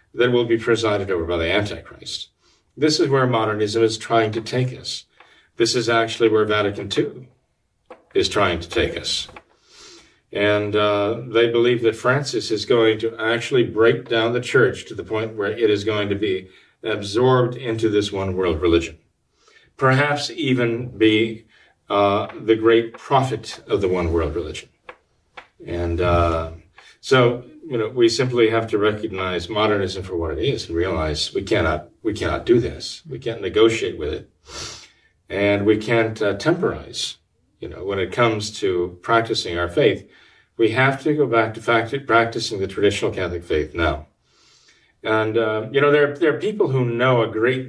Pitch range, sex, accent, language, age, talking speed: 105-125 Hz, male, American, English, 50-69, 170 wpm